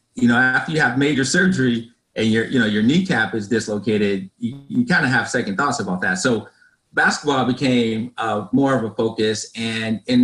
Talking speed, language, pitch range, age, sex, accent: 200 wpm, English, 105-135 Hz, 30-49, male, American